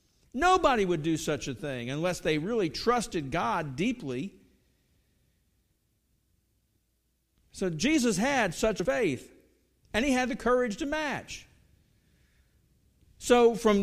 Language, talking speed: English, 115 wpm